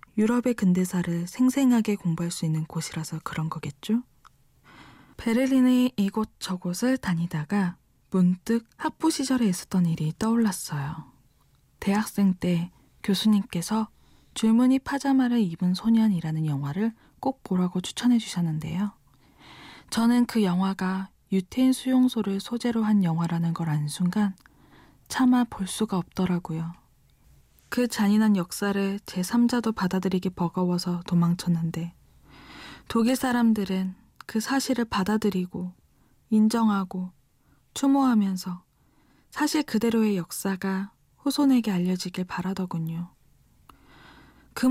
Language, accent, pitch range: Korean, native, 180-230 Hz